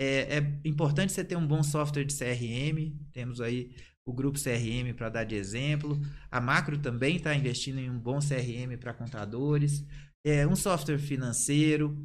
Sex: male